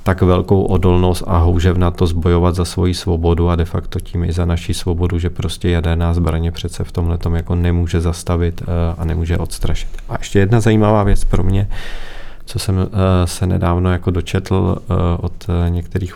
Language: Czech